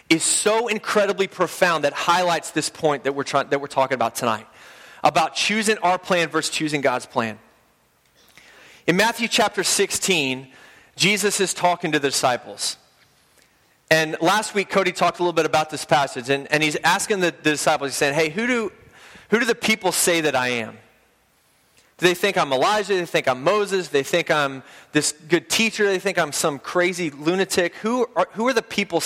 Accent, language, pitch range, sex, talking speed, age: American, English, 145-190 Hz, male, 190 wpm, 30-49